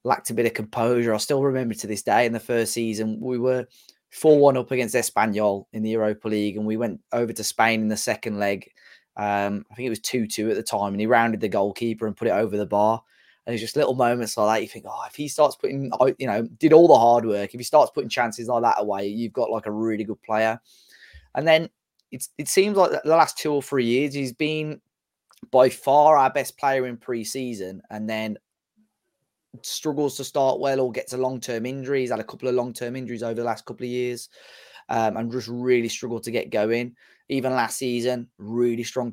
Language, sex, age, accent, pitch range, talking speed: English, male, 20-39, British, 110-130 Hz, 225 wpm